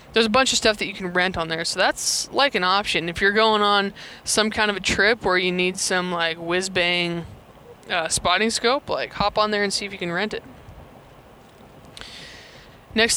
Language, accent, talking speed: English, American, 215 wpm